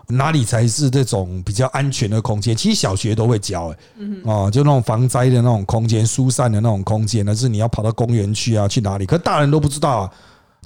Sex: male